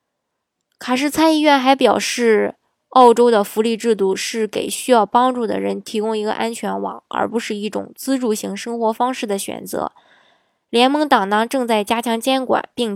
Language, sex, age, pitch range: Chinese, female, 20-39, 205-245 Hz